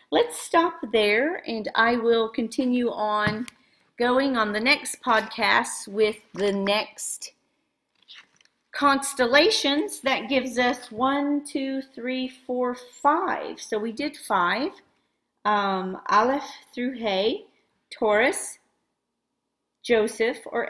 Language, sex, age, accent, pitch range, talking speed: English, female, 40-59, American, 210-270 Hz, 105 wpm